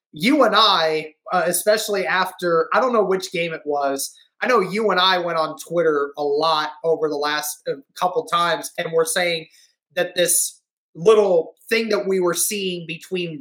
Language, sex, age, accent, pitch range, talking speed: English, male, 20-39, American, 165-205 Hz, 180 wpm